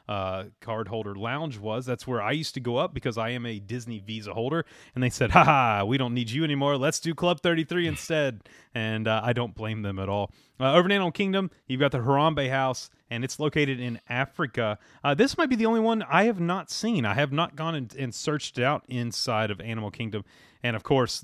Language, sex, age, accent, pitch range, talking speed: English, male, 30-49, American, 115-155 Hz, 230 wpm